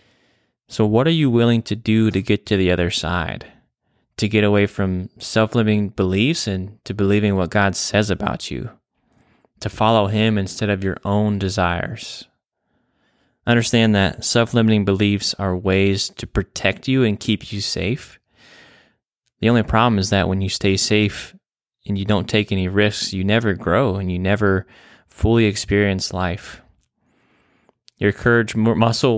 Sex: male